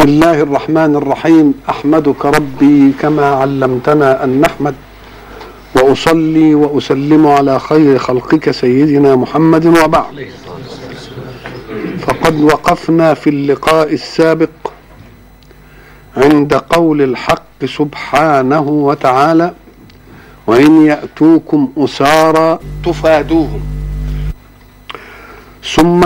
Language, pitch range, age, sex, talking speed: Arabic, 145-175 Hz, 50-69, male, 75 wpm